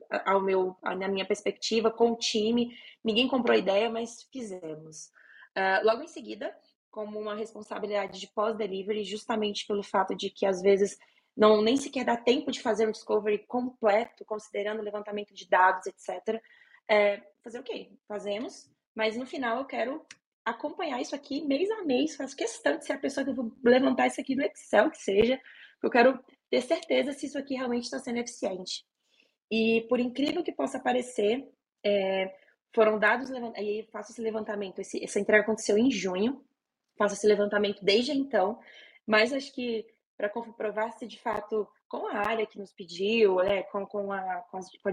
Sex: female